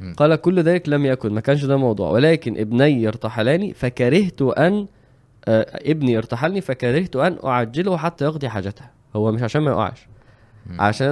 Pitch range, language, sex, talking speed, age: 115-145 Hz, Arabic, male, 150 wpm, 20-39